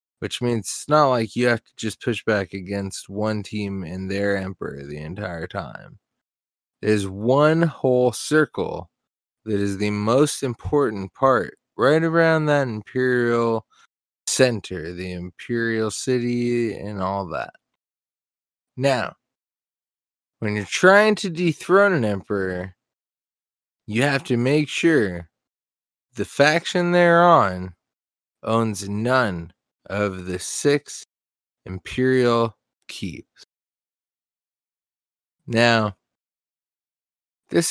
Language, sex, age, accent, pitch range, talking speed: English, male, 20-39, American, 100-140 Hz, 105 wpm